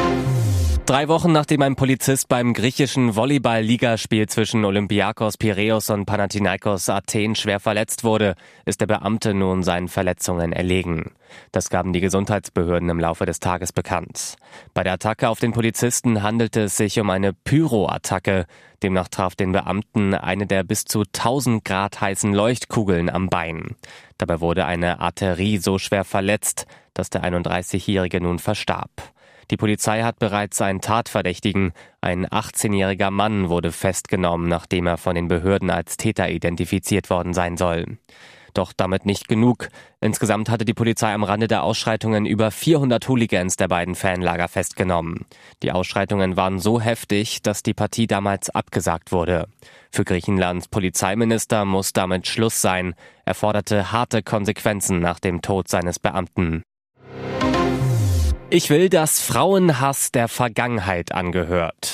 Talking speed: 140 wpm